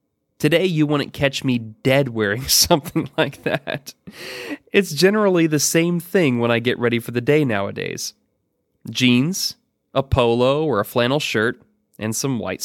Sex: male